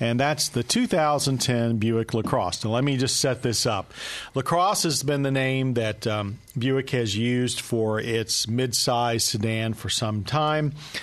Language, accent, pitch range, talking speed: English, American, 110-135 Hz, 165 wpm